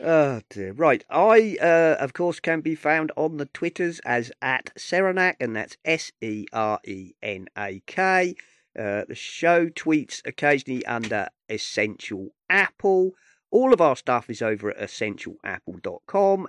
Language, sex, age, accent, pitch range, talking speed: English, male, 40-59, British, 125-170 Hz, 125 wpm